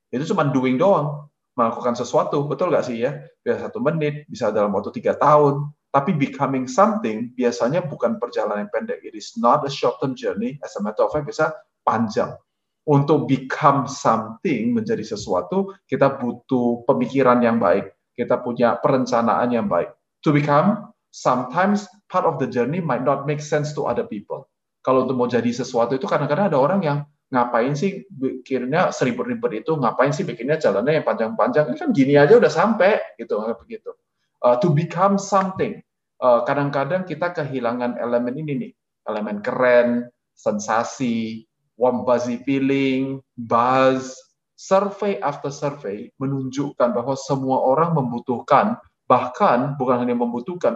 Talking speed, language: 150 wpm, Indonesian